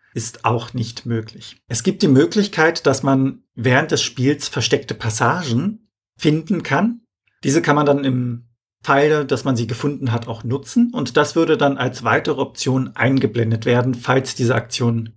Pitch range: 115-145 Hz